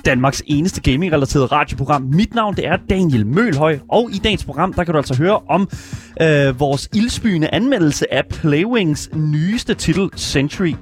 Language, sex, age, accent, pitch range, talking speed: Danish, male, 30-49, native, 140-185 Hz, 160 wpm